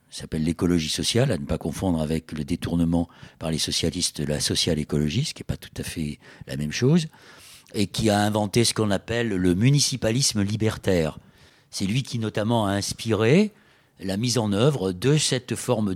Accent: French